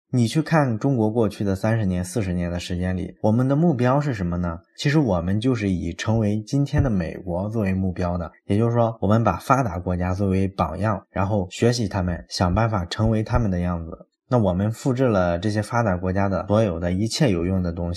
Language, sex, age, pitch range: Chinese, male, 20-39, 95-115 Hz